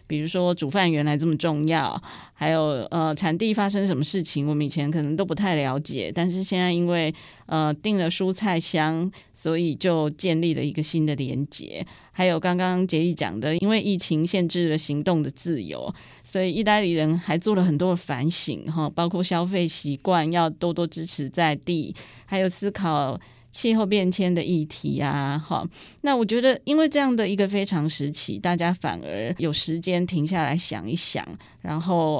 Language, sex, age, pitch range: Chinese, female, 20-39, 155-185 Hz